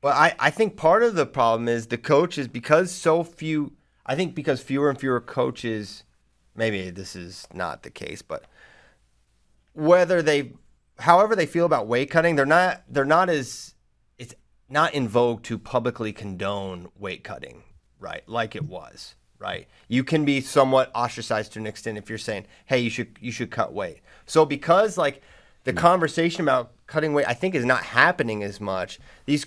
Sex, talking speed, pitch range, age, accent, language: male, 185 wpm, 115-150 Hz, 30-49, American, English